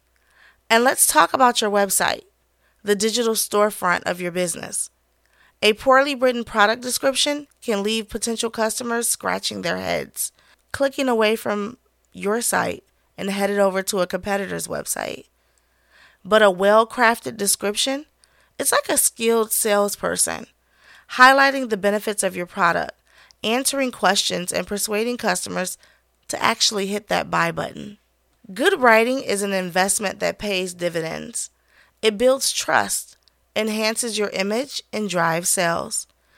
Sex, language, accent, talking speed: female, English, American, 130 wpm